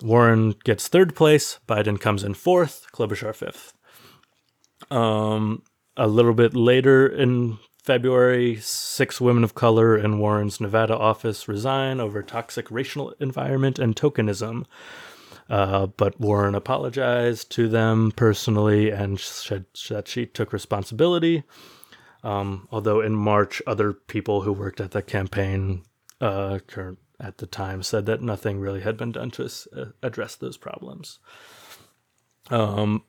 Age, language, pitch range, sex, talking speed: 30-49, English, 105-120 Hz, male, 130 wpm